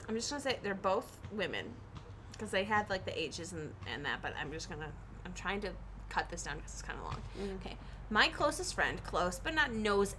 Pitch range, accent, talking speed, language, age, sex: 185-235 Hz, American, 230 wpm, English, 20-39, female